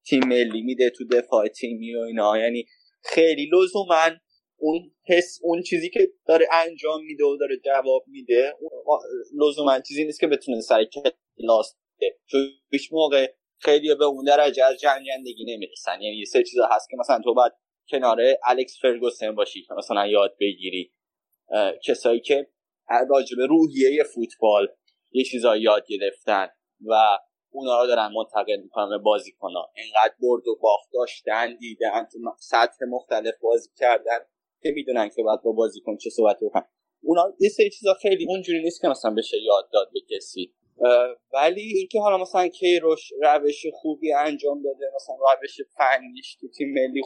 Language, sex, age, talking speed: Persian, male, 20-39, 150 wpm